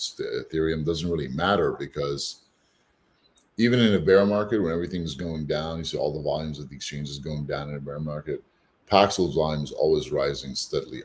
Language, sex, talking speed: Italian, male, 185 wpm